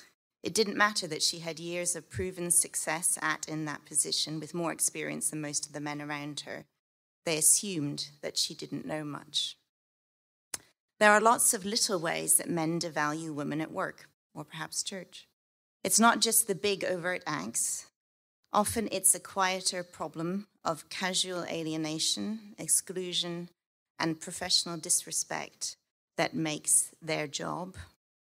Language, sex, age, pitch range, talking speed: English, female, 30-49, 155-185 Hz, 145 wpm